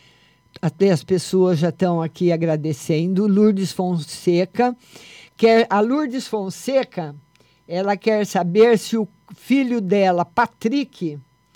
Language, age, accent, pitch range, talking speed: Portuguese, 50-69, Brazilian, 160-210 Hz, 105 wpm